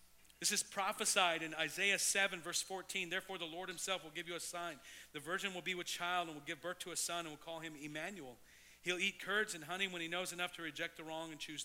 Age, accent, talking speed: 40-59, American, 260 wpm